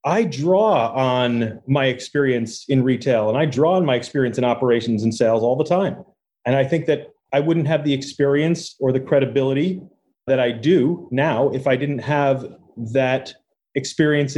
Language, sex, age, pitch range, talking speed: English, male, 30-49, 125-145 Hz, 175 wpm